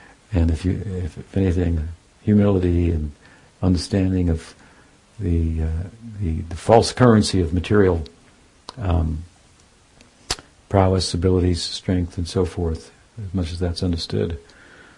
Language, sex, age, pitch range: English, male, 60-79, 85-100 Hz